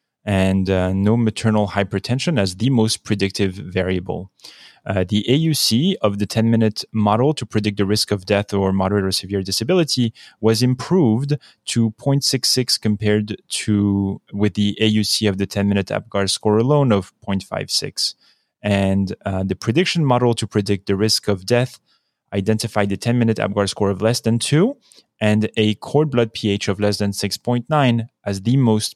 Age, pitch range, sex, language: 30-49, 100-120 Hz, male, English